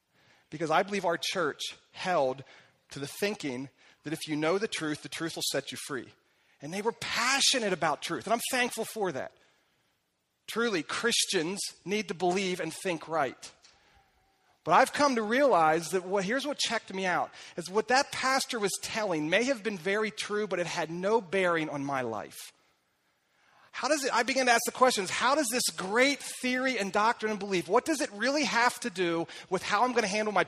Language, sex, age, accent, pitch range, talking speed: English, male, 40-59, American, 180-245 Hz, 205 wpm